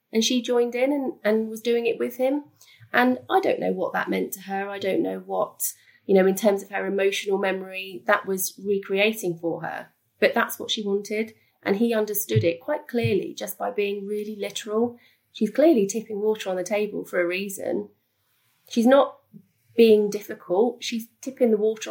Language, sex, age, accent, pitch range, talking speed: English, female, 30-49, British, 190-230 Hz, 195 wpm